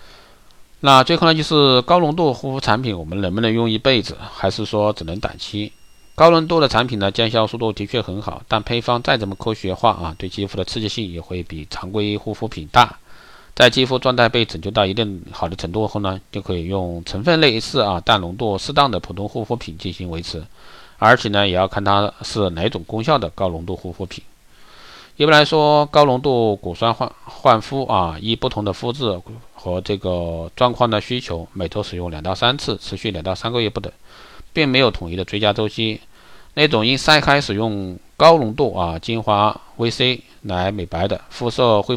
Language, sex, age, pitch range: Chinese, male, 50-69, 90-115 Hz